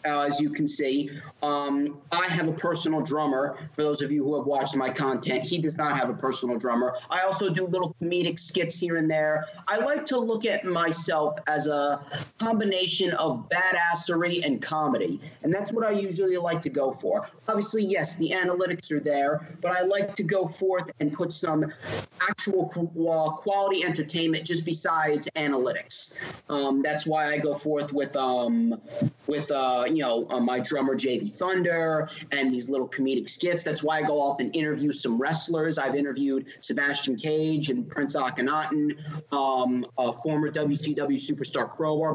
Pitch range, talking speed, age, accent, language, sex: 145-175 Hz, 175 wpm, 30-49, American, English, male